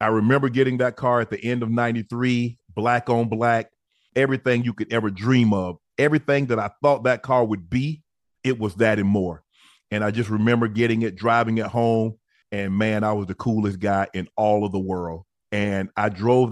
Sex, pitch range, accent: male, 100-120 Hz, American